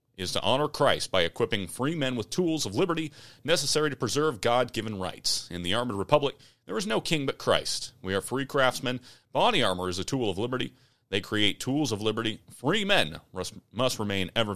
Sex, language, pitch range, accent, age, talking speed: male, English, 100-145 Hz, American, 30-49, 200 wpm